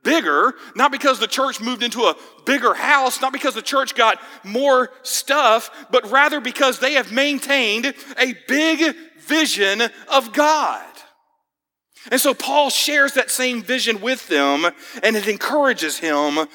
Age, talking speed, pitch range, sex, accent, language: 40-59, 150 wpm, 180-285 Hz, male, American, English